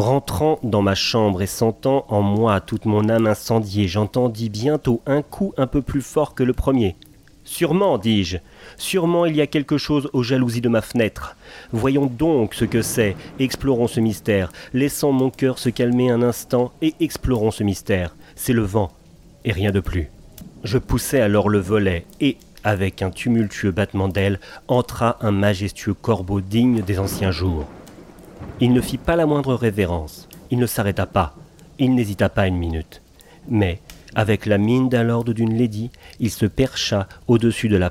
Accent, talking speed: French, 175 wpm